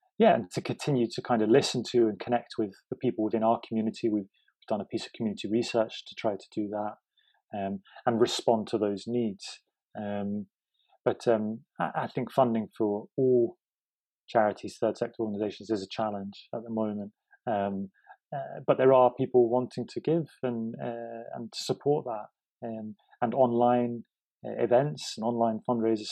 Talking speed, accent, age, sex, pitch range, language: 180 wpm, British, 30-49, male, 105-125 Hz, English